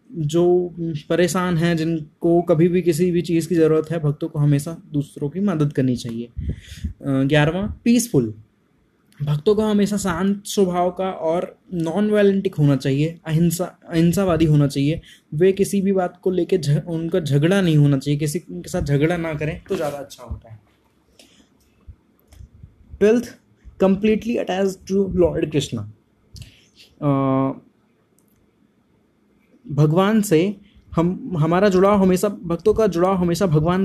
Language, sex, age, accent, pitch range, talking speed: Hindi, male, 20-39, native, 150-190 Hz, 135 wpm